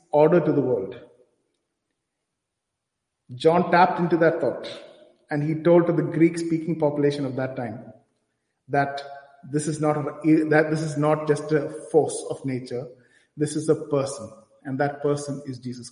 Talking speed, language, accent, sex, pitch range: 160 wpm, English, Indian, male, 140-170 Hz